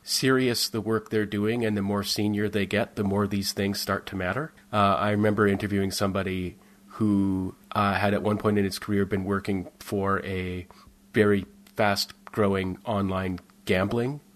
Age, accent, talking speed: 30-49, American, 165 wpm